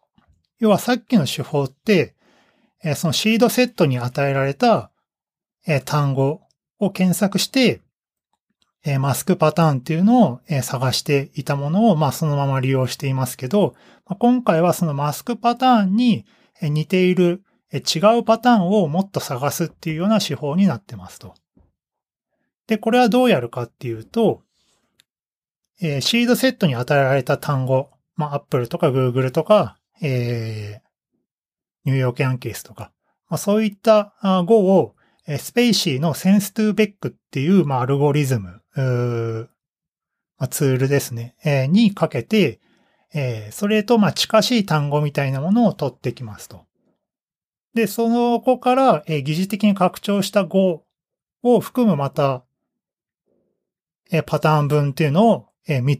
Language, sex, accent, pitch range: Japanese, male, native, 135-210 Hz